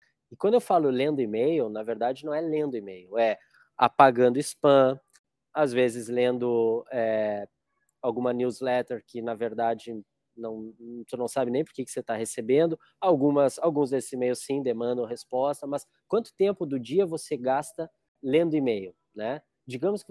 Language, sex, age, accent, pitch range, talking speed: Portuguese, male, 20-39, Brazilian, 125-175 Hz, 160 wpm